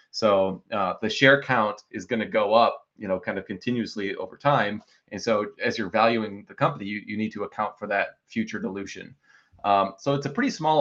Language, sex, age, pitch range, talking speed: English, male, 20-39, 95-120 Hz, 215 wpm